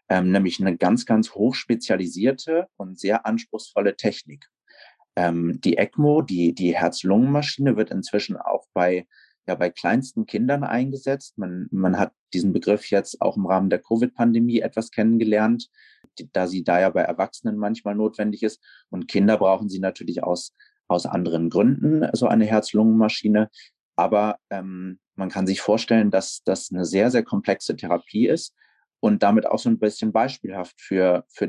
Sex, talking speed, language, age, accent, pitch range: male, 160 wpm, German, 30-49, German, 95-115 Hz